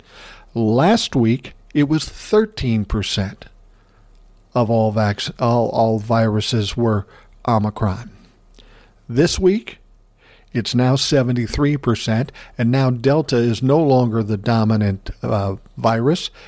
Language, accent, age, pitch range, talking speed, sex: English, American, 50-69, 115-140 Hz, 100 wpm, male